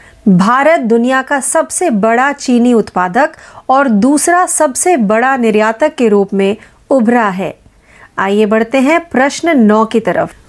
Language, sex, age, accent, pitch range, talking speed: Marathi, female, 40-59, native, 220-290 Hz, 135 wpm